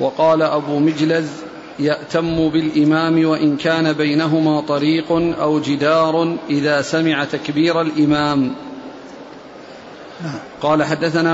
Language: Arabic